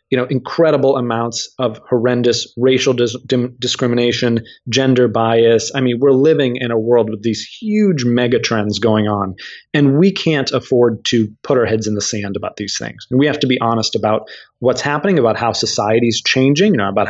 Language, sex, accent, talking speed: English, male, American, 195 wpm